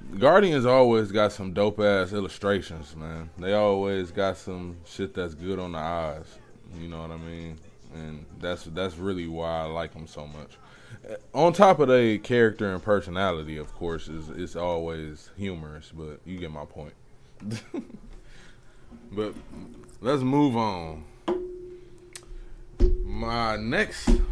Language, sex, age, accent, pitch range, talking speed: English, male, 20-39, American, 90-115 Hz, 140 wpm